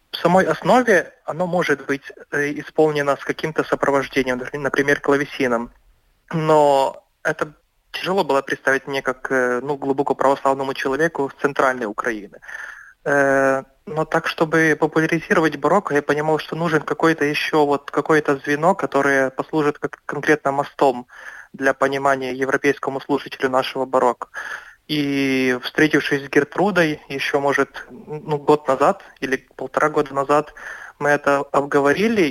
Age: 20-39